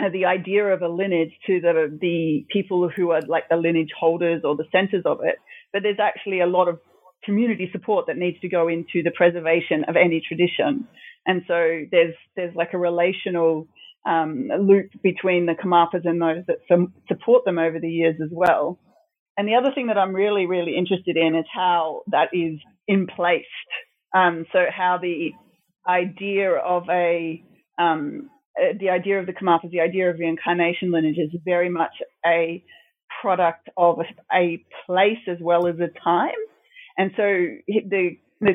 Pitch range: 170-200 Hz